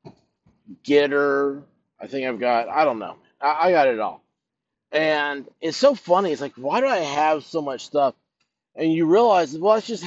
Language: English